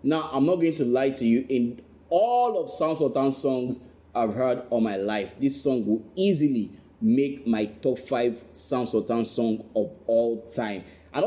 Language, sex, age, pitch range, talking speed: English, male, 30-49, 120-180 Hz, 180 wpm